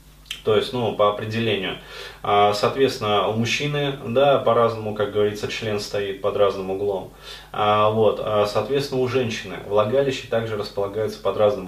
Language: Russian